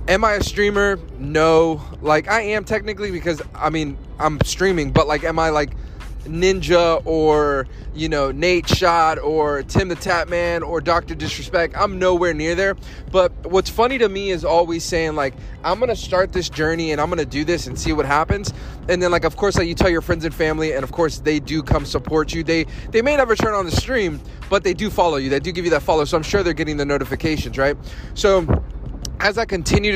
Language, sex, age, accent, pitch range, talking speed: English, male, 20-39, American, 145-180 Hz, 225 wpm